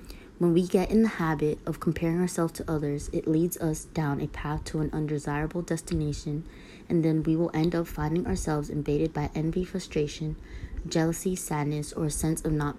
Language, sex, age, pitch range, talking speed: English, female, 20-39, 150-175 Hz, 190 wpm